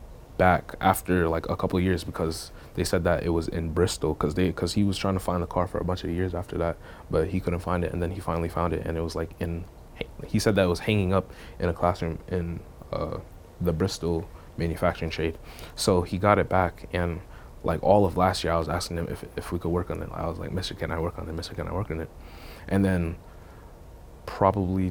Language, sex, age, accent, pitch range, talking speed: English, male, 20-39, American, 85-95 Hz, 245 wpm